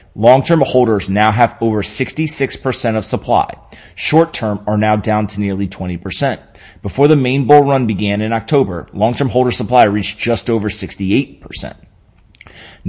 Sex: male